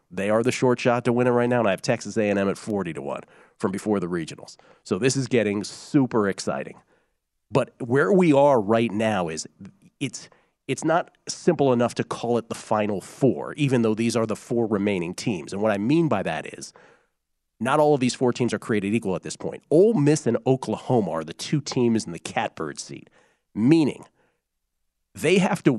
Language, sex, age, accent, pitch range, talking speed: English, male, 40-59, American, 105-135 Hz, 205 wpm